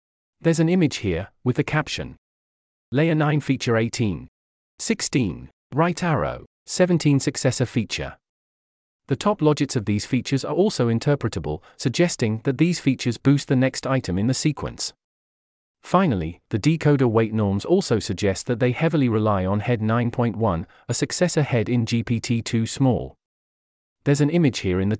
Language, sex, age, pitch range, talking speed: English, male, 40-59, 105-145 Hz, 150 wpm